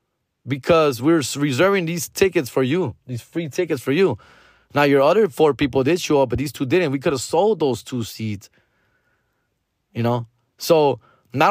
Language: English